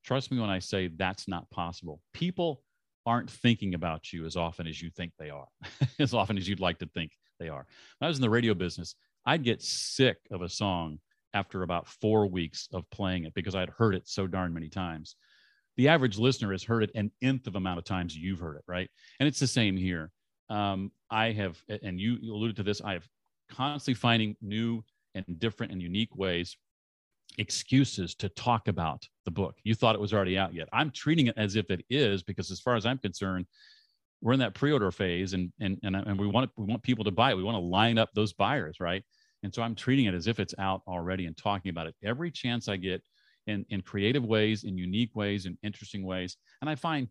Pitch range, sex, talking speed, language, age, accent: 95-115 Hz, male, 230 wpm, English, 40-59, American